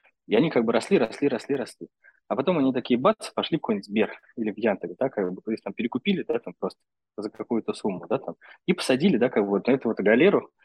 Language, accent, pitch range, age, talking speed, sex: Russian, native, 115-140 Hz, 20-39, 250 wpm, male